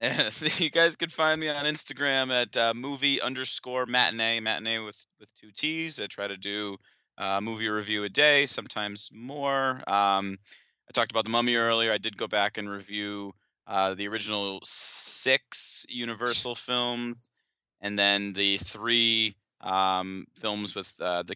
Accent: American